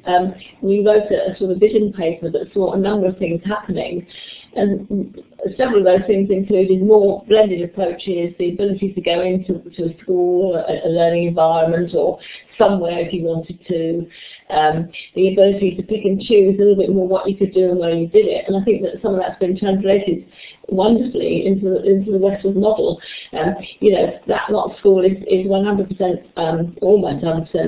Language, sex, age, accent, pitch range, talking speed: English, female, 30-49, British, 180-210 Hz, 190 wpm